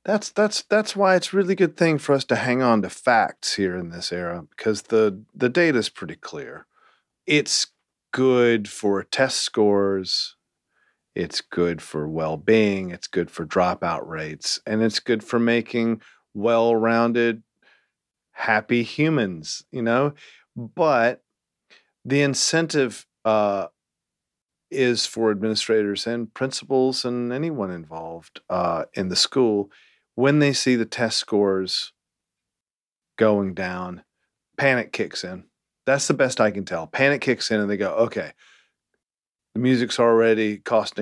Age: 40-59